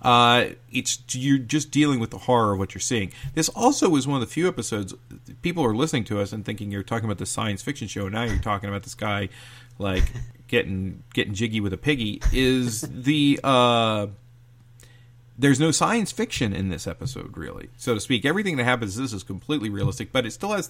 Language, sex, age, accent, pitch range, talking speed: English, male, 40-59, American, 105-130 Hz, 215 wpm